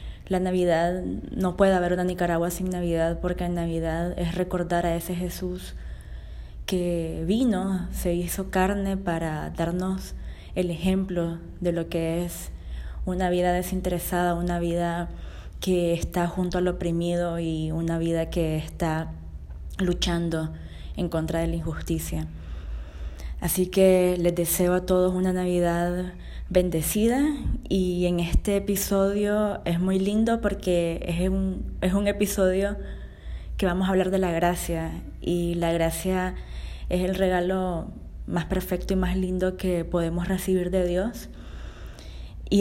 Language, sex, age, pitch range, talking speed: Spanish, female, 20-39, 165-185 Hz, 135 wpm